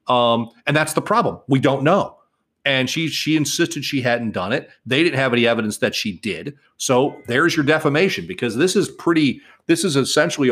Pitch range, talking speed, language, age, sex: 120-145 Hz, 200 wpm, English, 40-59, male